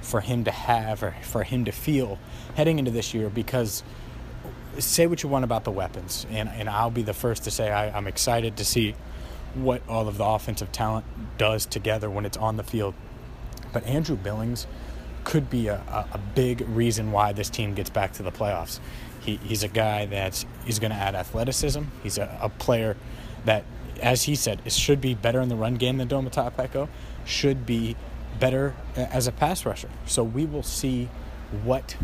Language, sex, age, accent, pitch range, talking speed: English, male, 20-39, American, 105-125 Hz, 200 wpm